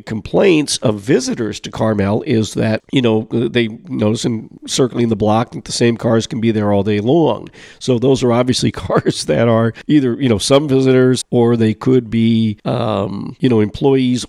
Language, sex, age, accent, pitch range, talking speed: English, male, 50-69, American, 110-130 Hz, 190 wpm